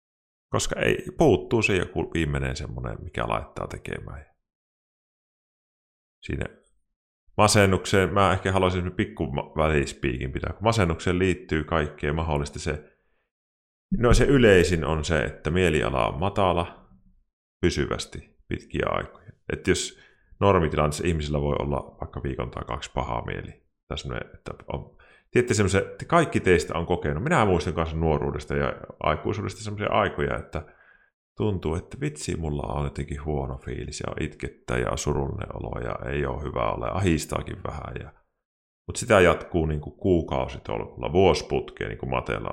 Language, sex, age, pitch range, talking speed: Finnish, male, 30-49, 70-90 Hz, 130 wpm